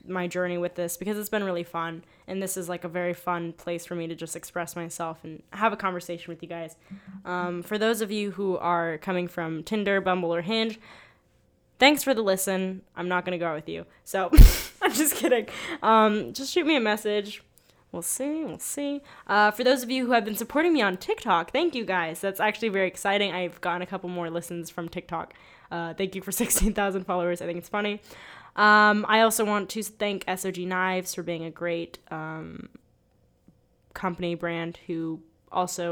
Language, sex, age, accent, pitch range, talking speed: English, female, 10-29, American, 170-210 Hz, 205 wpm